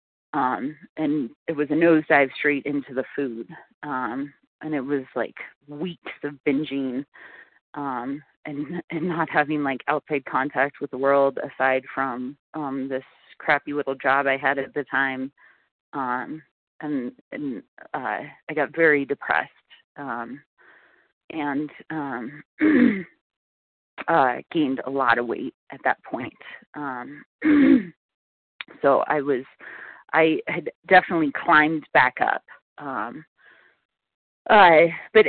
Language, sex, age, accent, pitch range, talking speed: English, female, 30-49, American, 140-190 Hz, 125 wpm